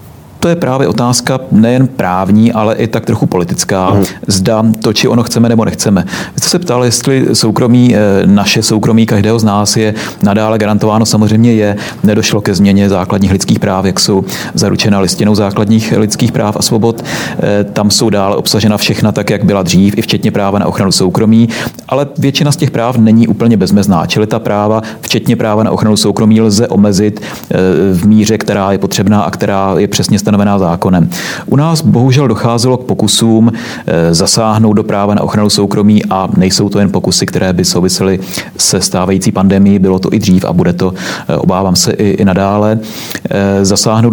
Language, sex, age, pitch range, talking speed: Czech, male, 40-59, 100-115 Hz, 175 wpm